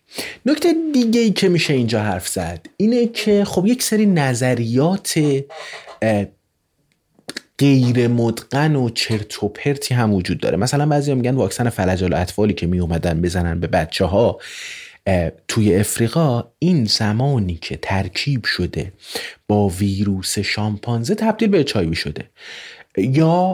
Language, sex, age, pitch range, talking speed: Persian, male, 30-49, 100-140 Hz, 120 wpm